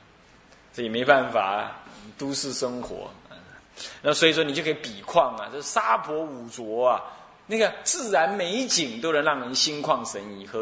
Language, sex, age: Chinese, male, 20-39